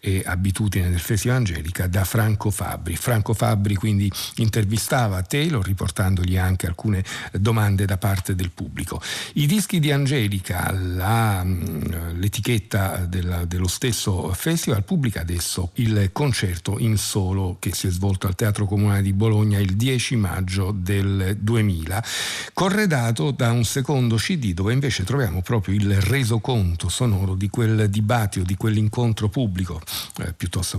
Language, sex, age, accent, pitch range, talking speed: Italian, male, 50-69, native, 95-120 Hz, 135 wpm